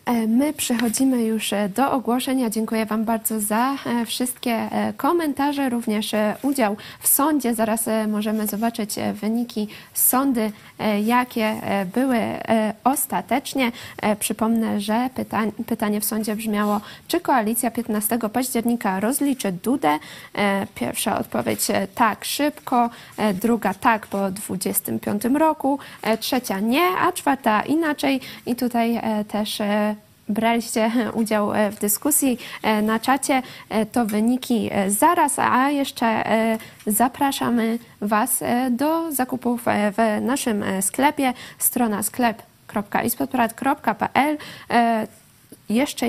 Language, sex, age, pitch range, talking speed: Polish, female, 20-39, 215-260 Hz, 95 wpm